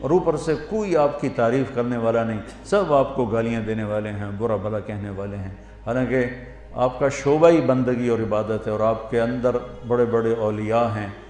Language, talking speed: Urdu, 205 wpm